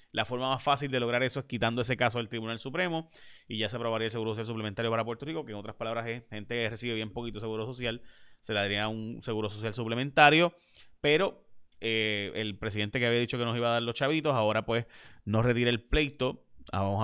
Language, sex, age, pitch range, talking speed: Spanish, male, 30-49, 110-130 Hz, 230 wpm